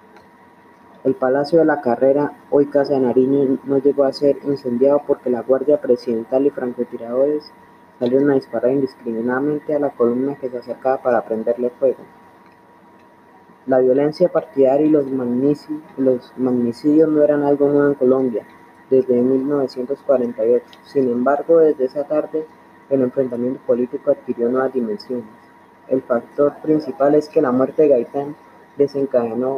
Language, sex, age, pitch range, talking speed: Spanish, female, 20-39, 125-145 Hz, 140 wpm